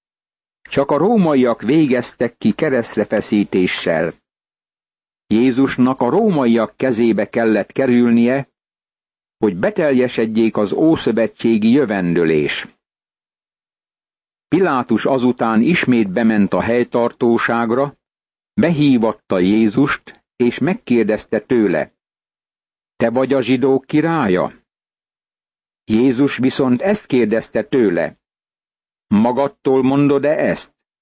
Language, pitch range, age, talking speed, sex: Hungarian, 110-130 Hz, 60-79, 80 wpm, male